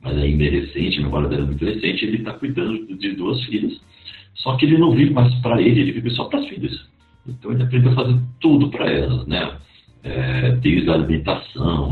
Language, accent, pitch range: Portuguese, Brazilian, 75-125 Hz